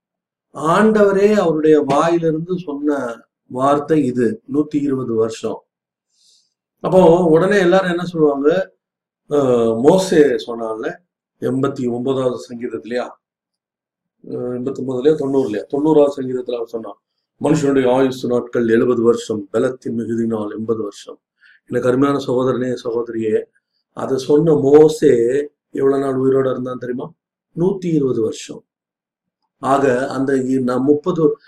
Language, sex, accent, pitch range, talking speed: Tamil, male, native, 125-165 Hz, 100 wpm